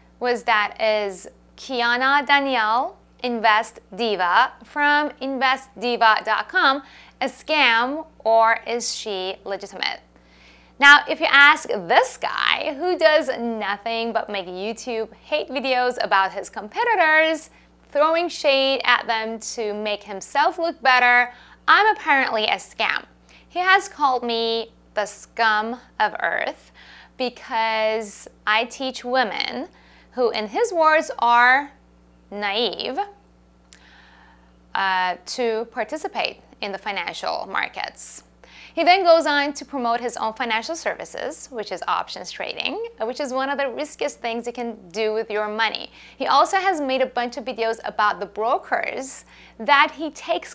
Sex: female